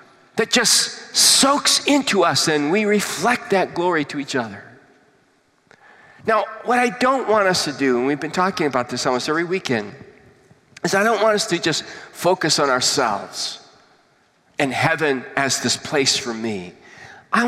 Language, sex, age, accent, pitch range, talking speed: English, male, 40-59, American, 155-235 Hz, 165 wpm